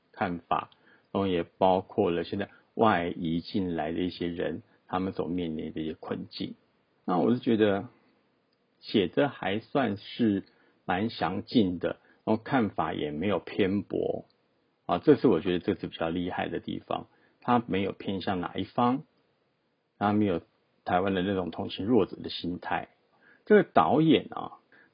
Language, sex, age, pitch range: Chinese, male, 50-69, 85-110 Hz